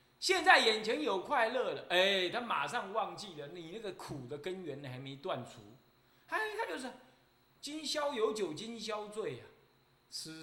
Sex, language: male, Chinese